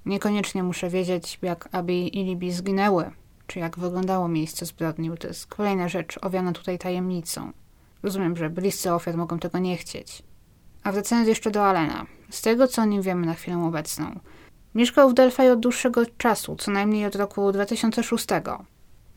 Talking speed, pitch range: 165 wpm, 180-220 Hz